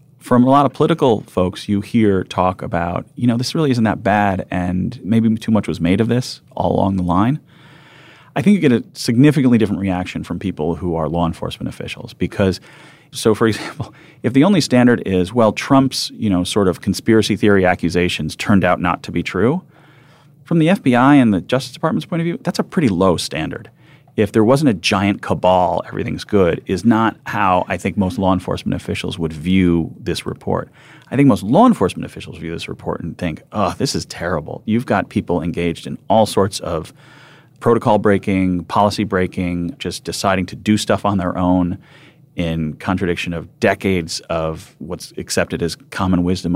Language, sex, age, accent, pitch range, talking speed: English, male, 40-59, American, 90-135 Hz, 190 wpm